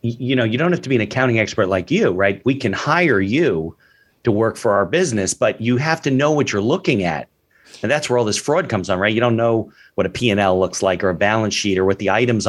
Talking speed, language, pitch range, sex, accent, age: 280 wpm, English, 100-130 Hz, male, American, 40-59